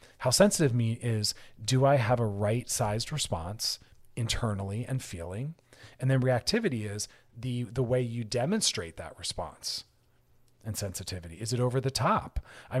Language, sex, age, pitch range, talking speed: English, male, 40-59, 110-130 Hz, 155 wpm